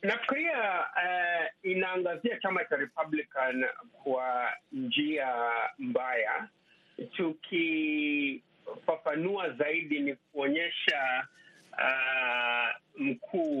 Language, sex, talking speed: Swahili, male, 65 wpm